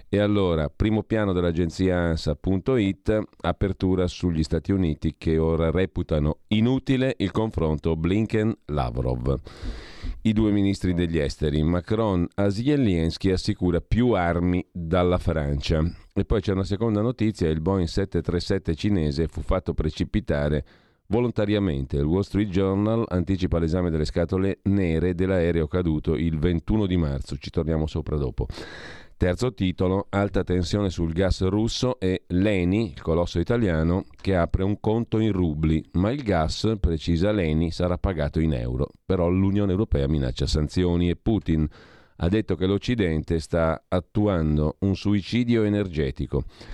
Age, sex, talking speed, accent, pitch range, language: 40-59, male, 135 wpm, native, 80-100 Hz, Italian